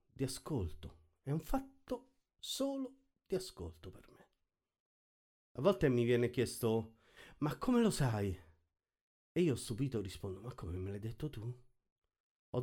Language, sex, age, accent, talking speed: Italian, male, 50-69, native, 145 wpm